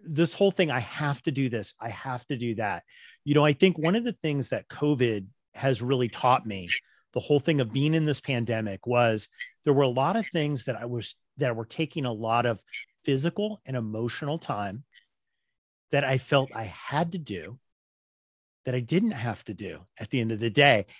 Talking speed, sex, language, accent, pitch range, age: 210 wpm, male, English, American, 125-170 Hz, 30-49